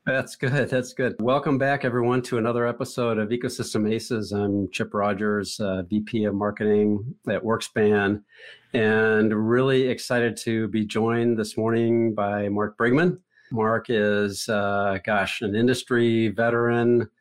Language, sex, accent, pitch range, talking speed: English, male, American, 105-120 Hz, 140 wpm